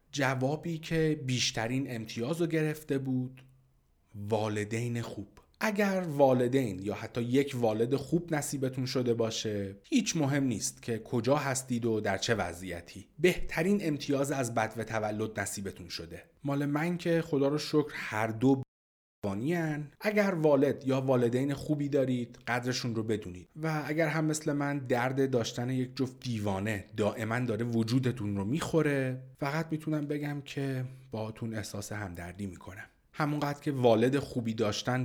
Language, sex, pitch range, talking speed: Persian, male, 105-140 Hz, 145 wpm